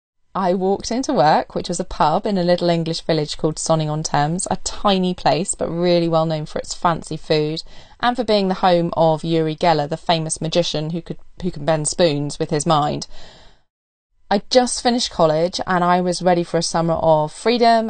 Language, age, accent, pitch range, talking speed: English, 20-39, British, 160-195 Hz, 200 wpm